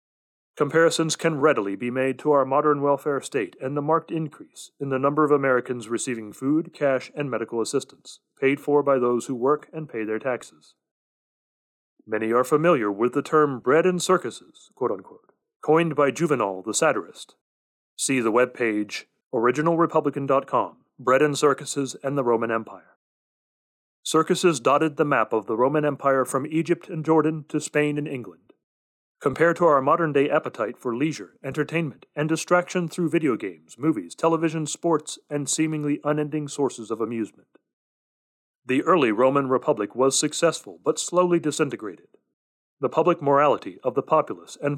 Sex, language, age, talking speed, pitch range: male, English, 40-59, 155 wpm, 130-160 Hz